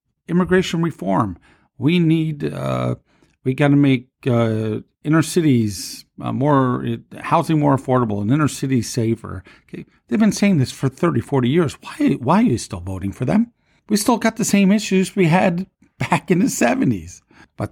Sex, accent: male, American